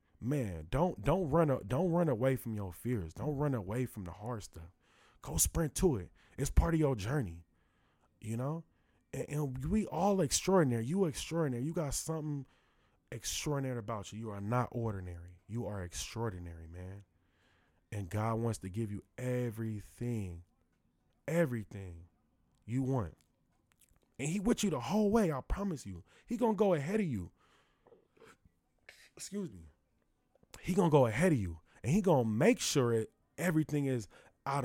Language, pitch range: English, 95-150 Hz